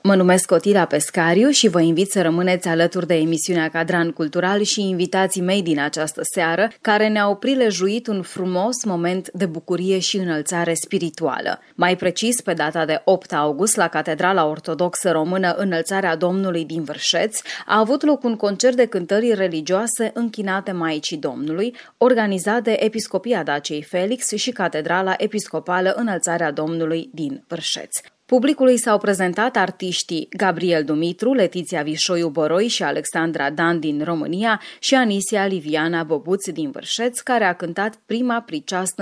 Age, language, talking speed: 20-39, Romanian, 145 wpm